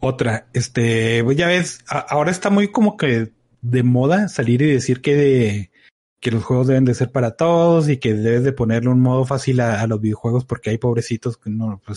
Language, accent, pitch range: Spanish, Mexican, 115-145 Hz